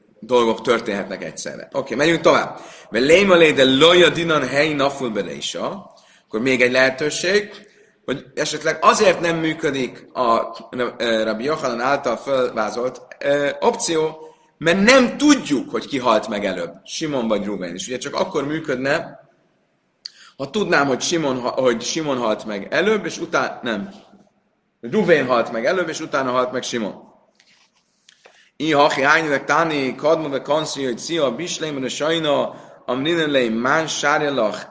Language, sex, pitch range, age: Hungarian, male, 125-180 Hz, 30-49